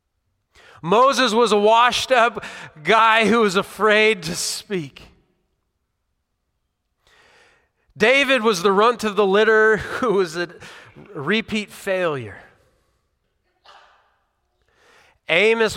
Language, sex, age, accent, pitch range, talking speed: English, male, 40-59, American, 120-200 Hz, 90 wpm